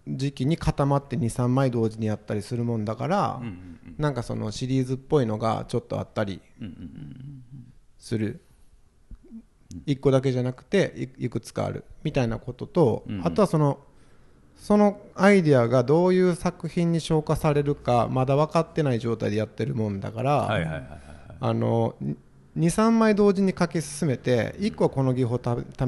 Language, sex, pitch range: Japanese, male, 115-155 Hz